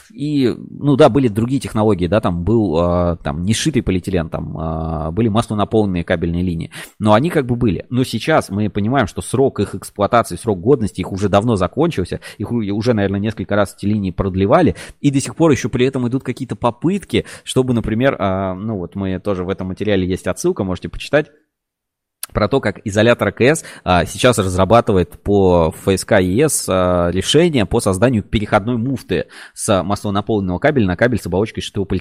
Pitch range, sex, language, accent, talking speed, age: 95-125 Hz, male, Russian, native, 175 wpm, 20-39